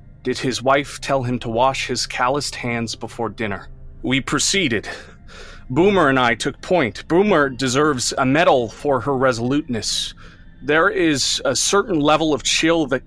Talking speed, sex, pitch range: 155 wpm, male, 110-145 Hz